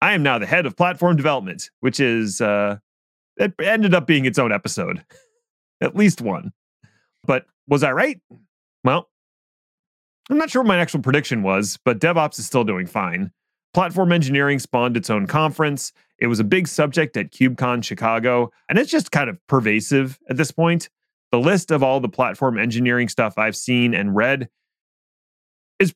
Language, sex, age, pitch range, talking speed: English, male, 30-49, 115-160 Hz, 175 wpm